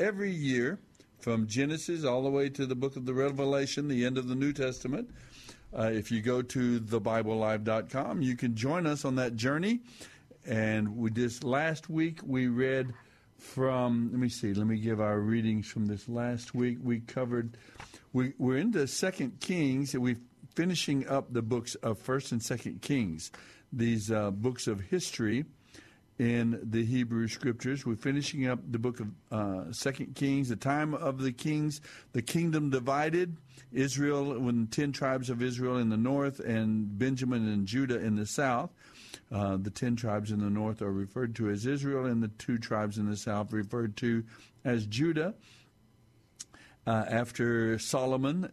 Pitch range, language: 110-135 Hz, English